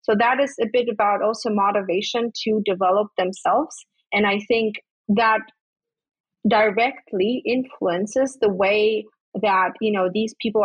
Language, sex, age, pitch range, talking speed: English, female, 30-49, 195-230 Hz, 135 wpm